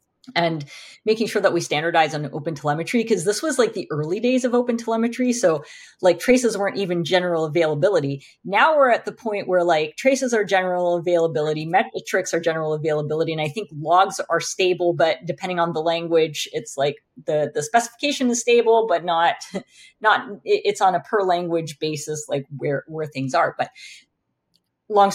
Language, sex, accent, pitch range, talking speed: English, female, American, 155-200 Hz, 180 wpm